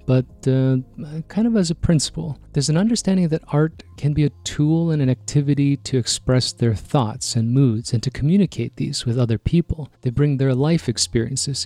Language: English